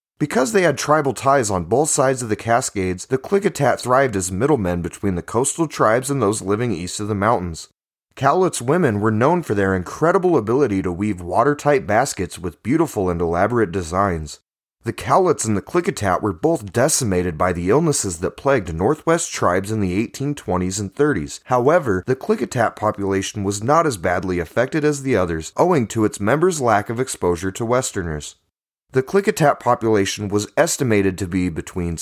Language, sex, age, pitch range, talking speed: English, male, 30-49, 95-140 Hz, 175 wpm